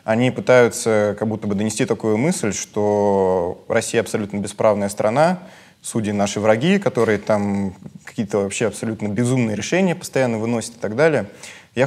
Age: 20-39